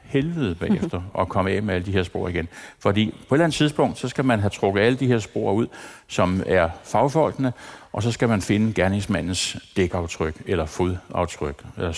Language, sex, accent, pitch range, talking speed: Danish, male, native, 95-120 Hz, 205 wpm